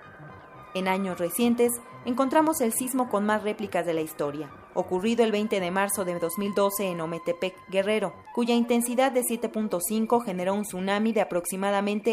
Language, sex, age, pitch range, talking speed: Spanish, female, 30-49, 175-220 Hz, 155 wpm